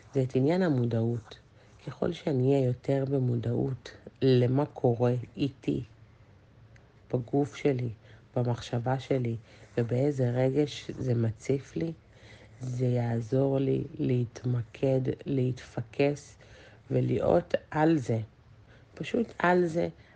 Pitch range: 110-135 Hz